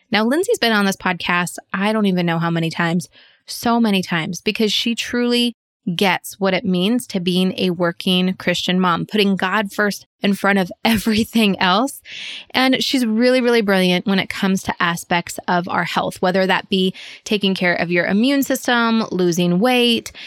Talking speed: 180 wpm